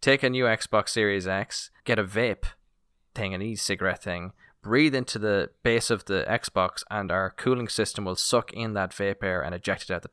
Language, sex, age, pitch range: English, male, 10-29, 95-115 Hz